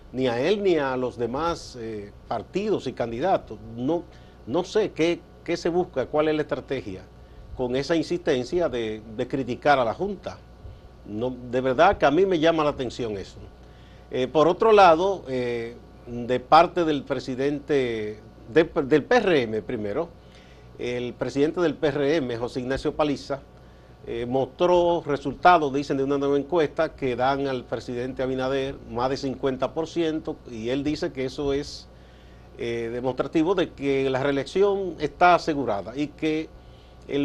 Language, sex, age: Spanish, male, 50-69